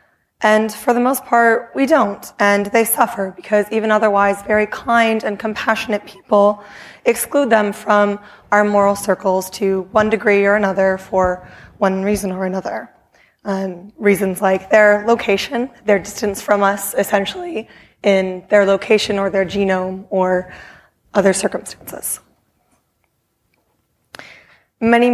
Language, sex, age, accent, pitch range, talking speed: English, female, 20-39, American, 200-225 Hz, 130 wpm